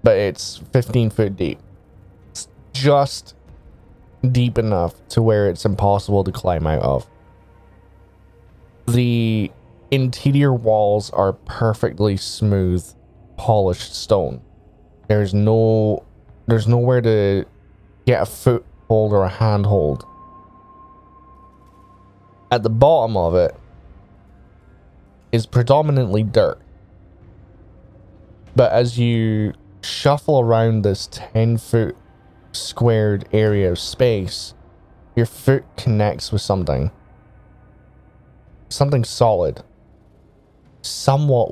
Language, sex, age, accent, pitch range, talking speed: English, male, 20-39, American, 95-115 Hz, 90 wpm